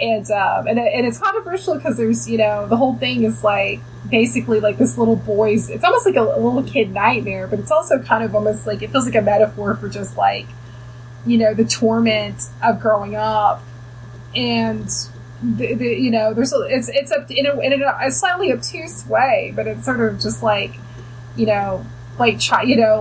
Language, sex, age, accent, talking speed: English, female, 20-39, American, 200 wpm